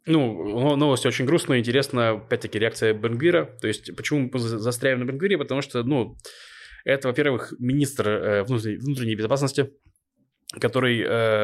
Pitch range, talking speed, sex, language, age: 110-135 Hz, 125 wpm, male, Russian, 20-39